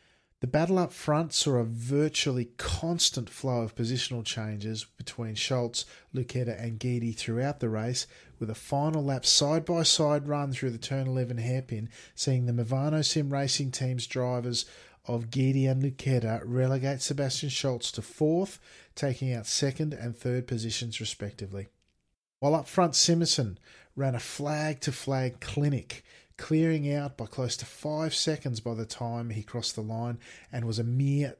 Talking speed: 155 wpm